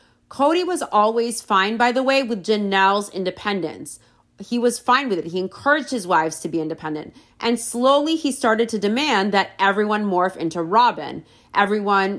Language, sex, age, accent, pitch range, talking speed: English, female, 30-49, American, 180-255 Hz, 165 wpm